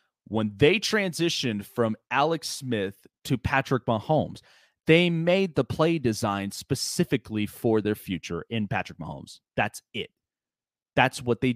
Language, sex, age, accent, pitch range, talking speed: English, male, 30-49, American, 110-150 Hz, 135 wpm